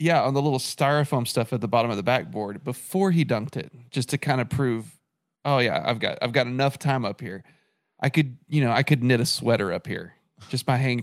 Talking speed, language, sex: 245 wpm, English, male